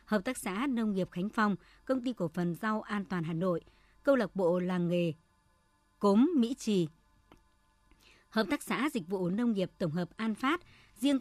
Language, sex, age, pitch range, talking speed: Vietnamese, male, 60-79, 180-230 Hz, 195 wpm